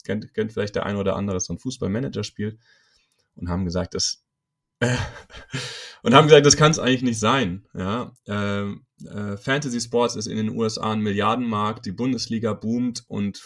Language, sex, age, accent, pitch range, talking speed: German, male, 30-49, German, 95-115 Hz, 170 wpm